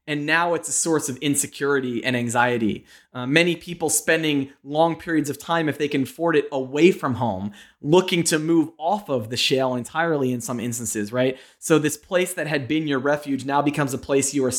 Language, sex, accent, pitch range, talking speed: English, male, American, 130-165 Hz, 210 wpm